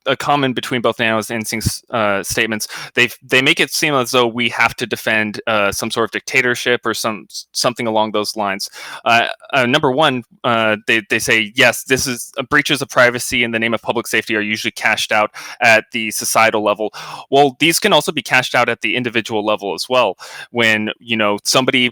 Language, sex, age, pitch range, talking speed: English, male, 20-39, 110-135 Hz, 210 wpm